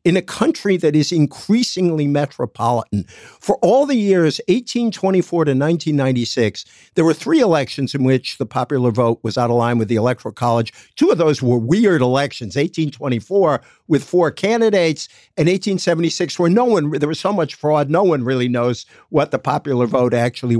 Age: 50-69